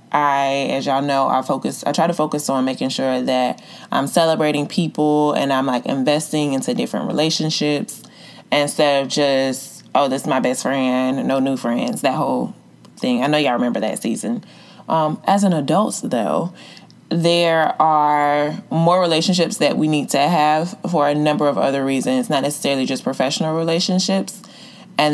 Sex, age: female, 20-39